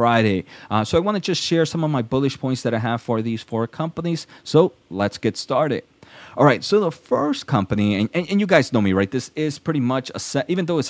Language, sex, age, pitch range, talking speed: English, male, 20-39, 110-135 Hz, 260 wpm